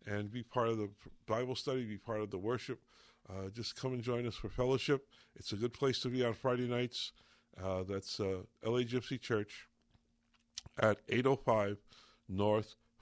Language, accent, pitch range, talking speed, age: English, American, 105-120 Hz, 175 wpm, 50-69